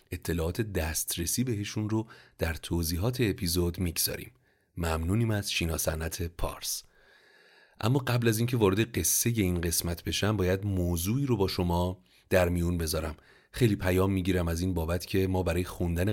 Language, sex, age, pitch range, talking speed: Persian, male, 30-49, 85-100 Hz, 145 wpm